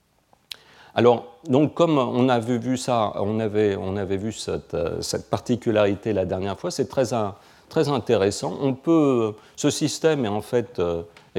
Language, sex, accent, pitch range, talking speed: French, male, French, 95-125 Hz, 165 wpm